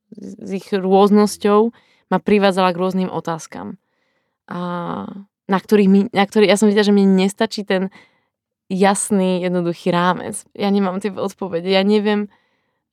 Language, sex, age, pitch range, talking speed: Slovak, female, 20-39, 185-215 Hz, 140 wpm